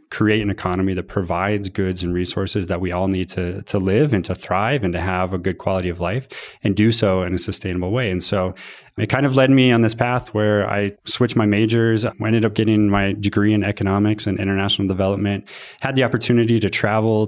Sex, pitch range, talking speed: male, 95-110 Hz, 220 wpm